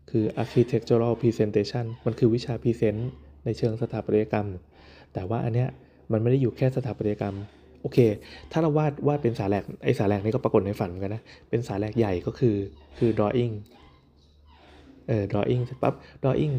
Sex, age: male, 20-39